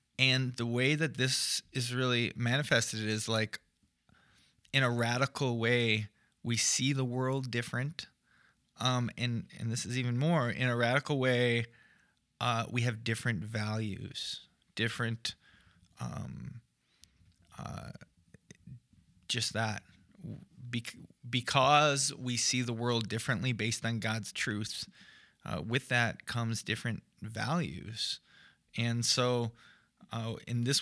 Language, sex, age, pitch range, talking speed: English, male, 20-39, 115-130 Hz, 115 wpm